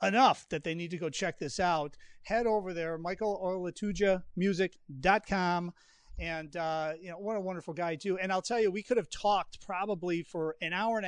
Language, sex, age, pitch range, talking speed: English, male, 40-59, 155-205 Hz, 195 wpm